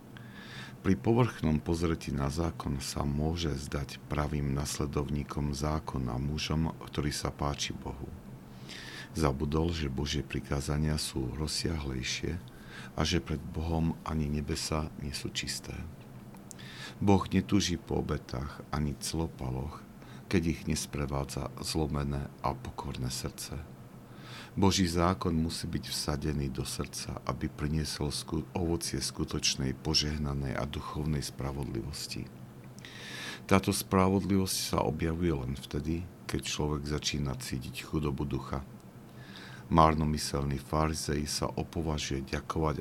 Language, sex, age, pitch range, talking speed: Slovak, male, 50-69, 65-80 Hz, 110 wpm